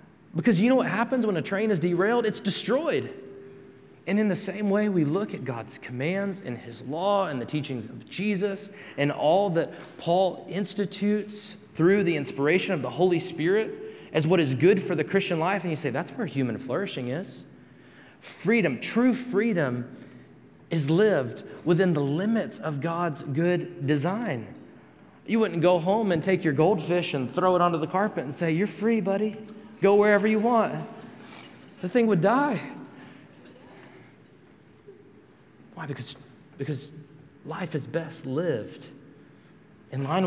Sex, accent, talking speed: male, American, 160 wpm